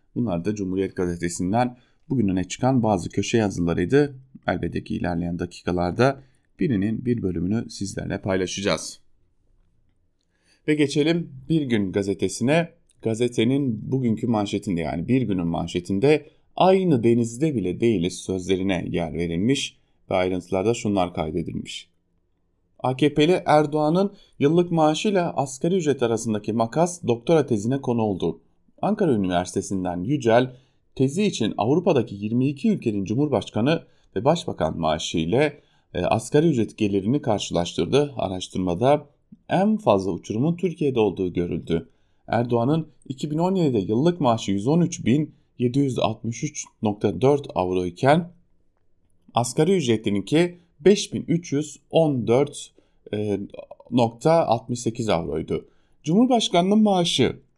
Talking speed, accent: 95 wpm, Turkish